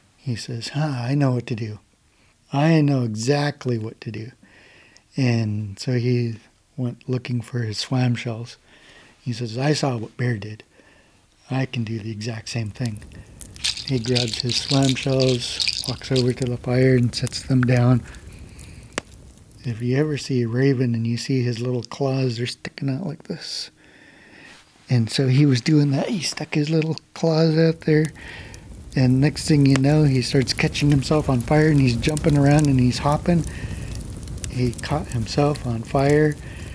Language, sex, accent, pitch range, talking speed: English, male, American, 115-140 Hz, 170 wpm